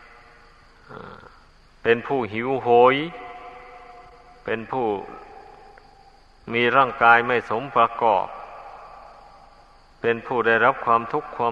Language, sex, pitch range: Thai, male, 110-135 Hz